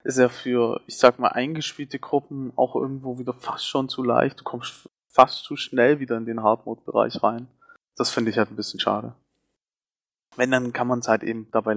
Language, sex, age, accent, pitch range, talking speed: German, male, 20-39, German, 115-125 Hz, 205 wpm